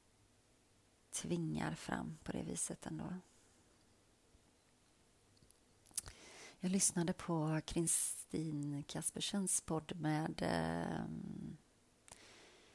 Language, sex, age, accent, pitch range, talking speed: Swedish, female, 30-49, native, 110-170 Hz, 65 wpm